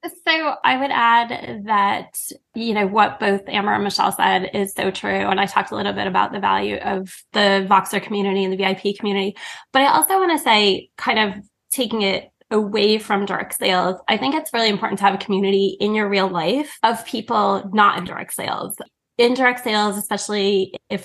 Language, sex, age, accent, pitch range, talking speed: English, female, 20-39, American, 185-220 Hz, 200 wpm